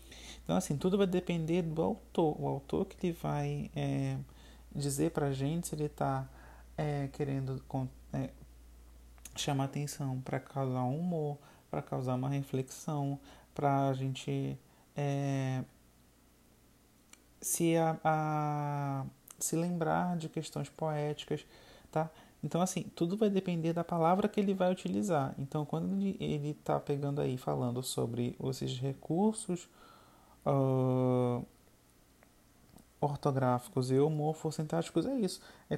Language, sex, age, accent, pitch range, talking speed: Portuguese, male, 30-49, Brazilian, 130-165 Hz, 110 wpm